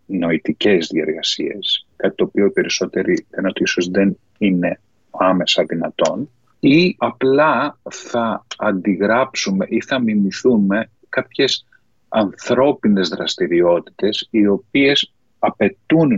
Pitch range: 95-125 Hz